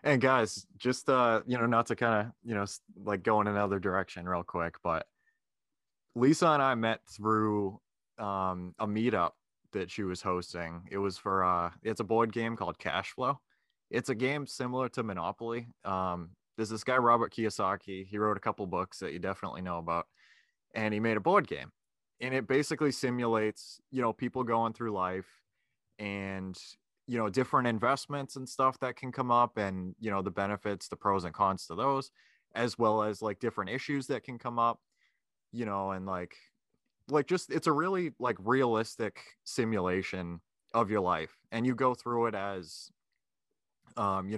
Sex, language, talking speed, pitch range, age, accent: male, English, 185 wpm, 95-125 Hz, 20-39, American